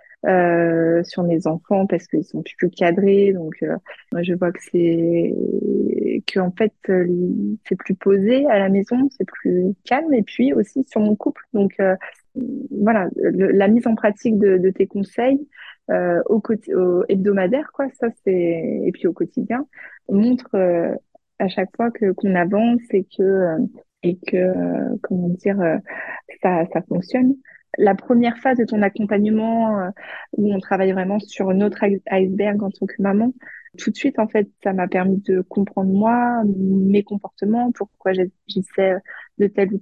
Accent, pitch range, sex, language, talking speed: French, 190-230 Hz, female, French, 170 wpm